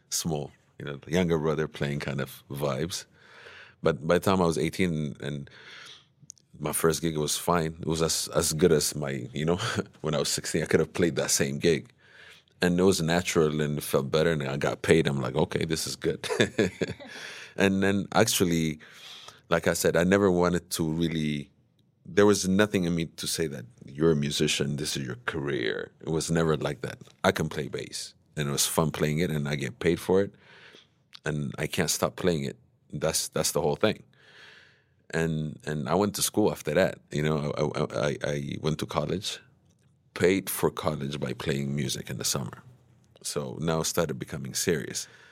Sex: male